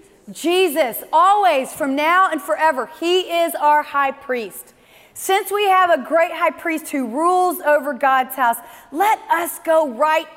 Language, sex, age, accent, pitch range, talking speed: English, female, 30-49, American, 250-335 Hz, 155 wpm